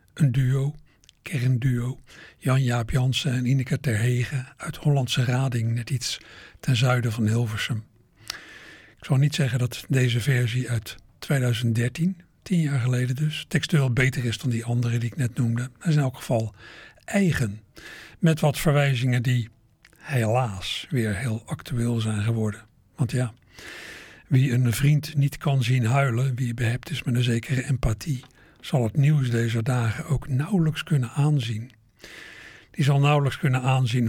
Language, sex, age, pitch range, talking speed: Dutch, male, 60-79, 115-140 Hz, 150 wpm